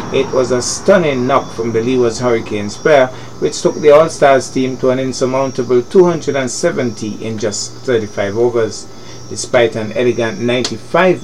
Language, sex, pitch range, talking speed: English, male, 110-135 Hz, 150 wpm